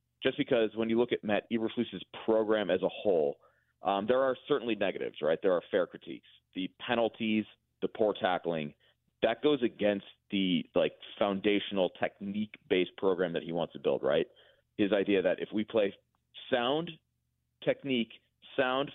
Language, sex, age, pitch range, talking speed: English, male, 30-49, 95-130 Hz, 160 wpm